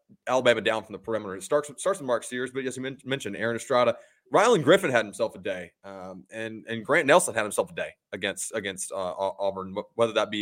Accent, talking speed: American, 225 wpm